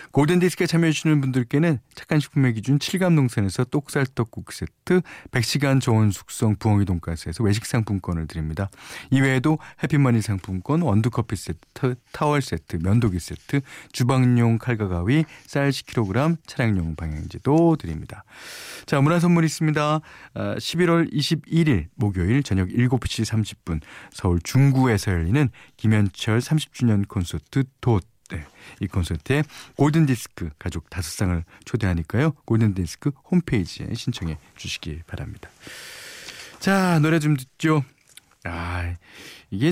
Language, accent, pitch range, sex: Korean, native, 95-145 Hz, male